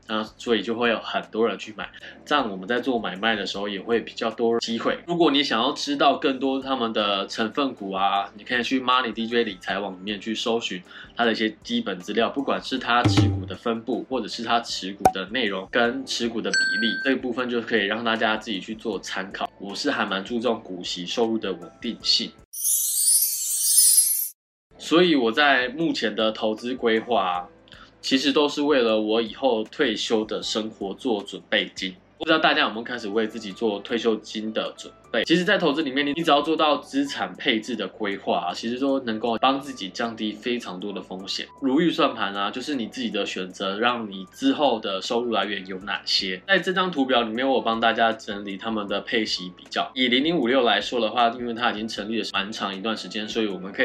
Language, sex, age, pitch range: Chinese, male, 20-39, 105-130 Hz